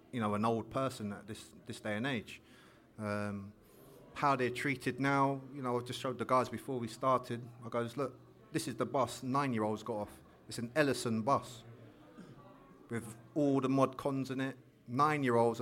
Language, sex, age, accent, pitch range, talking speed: English, male, 30-49, British, 110-130 Hz, 185 wpm